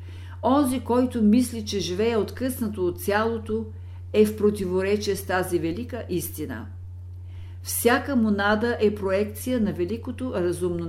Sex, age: female, 50-69